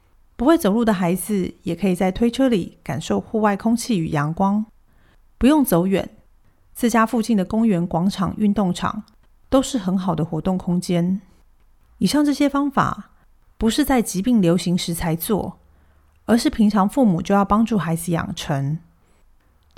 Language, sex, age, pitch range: Chinese, female, 30-49, 175-220 Hz